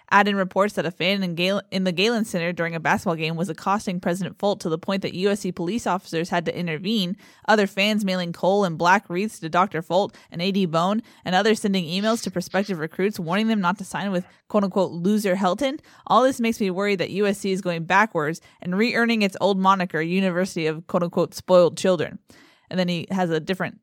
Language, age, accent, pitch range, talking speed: English, 20-39, American, 175-205 Hz, 210 wpm